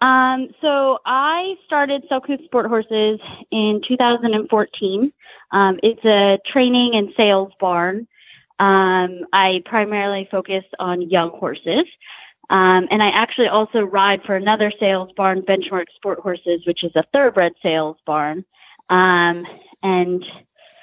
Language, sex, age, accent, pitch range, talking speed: English, female, 30-49, American, 185-235 Hz, 125 wpm